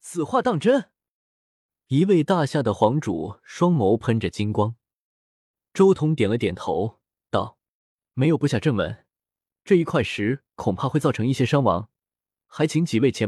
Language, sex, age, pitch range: Chinese, male, 20-39, 110-160 Hz